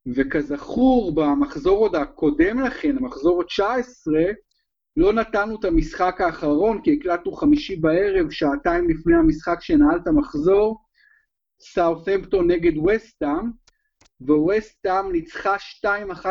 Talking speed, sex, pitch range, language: 100 wpm, male, 165-245 Hz, Hebrew